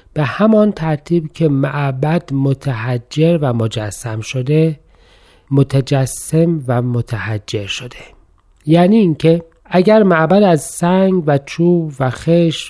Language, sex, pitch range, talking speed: Persian, male, 125-165 Hz, 110 wpm